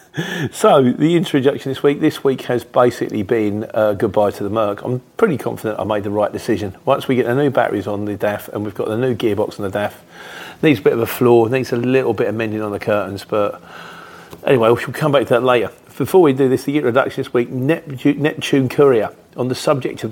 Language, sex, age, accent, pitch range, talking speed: English, male, 40-59, British, 110-160 Hz, 235 wpm